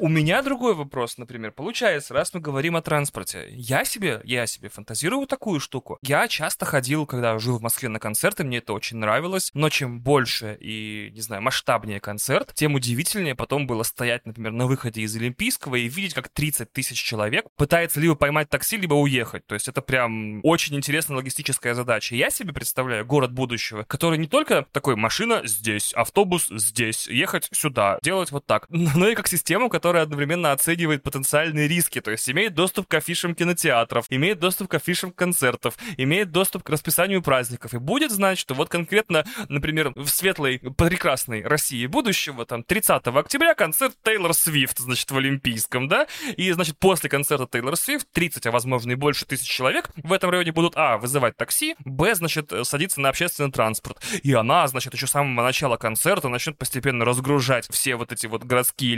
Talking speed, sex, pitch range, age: 180 wpm, male, 120-170 Hz, 20-39